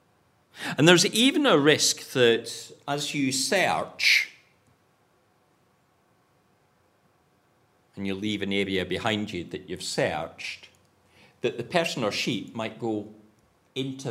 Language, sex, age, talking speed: English, male, 50-69, 115 wpm